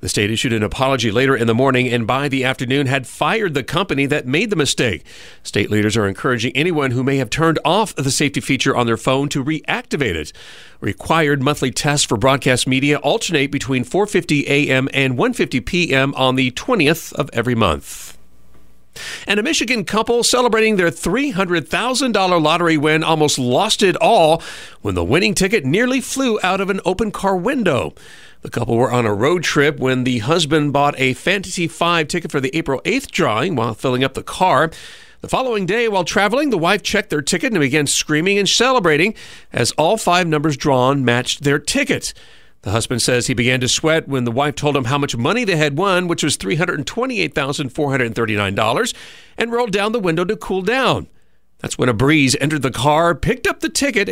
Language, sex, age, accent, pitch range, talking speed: English, male, 40-59, American, 130-185 Hz, 190 wpm